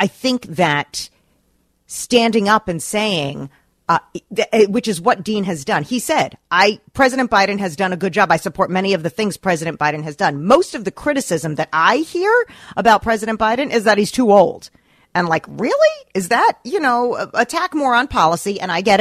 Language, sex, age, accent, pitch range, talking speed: English, female, 40-59, American, 180-245 Hz, 200 wpm